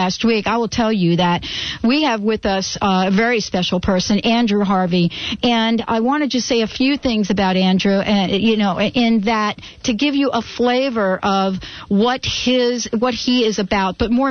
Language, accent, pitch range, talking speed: English, American, 200-250 Hz, 200 wpm